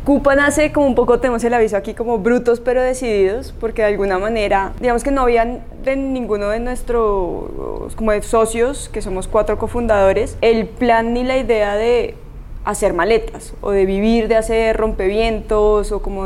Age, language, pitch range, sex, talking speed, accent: 20-39, Spanish, 200-240 Hz, female, 175 wpm, Colombian